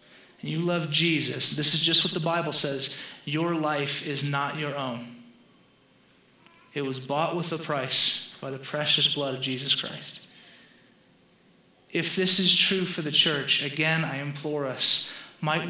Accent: American